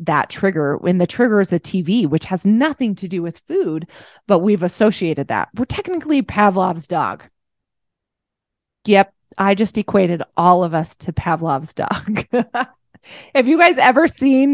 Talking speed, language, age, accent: 155 wpm, English, 20-39, American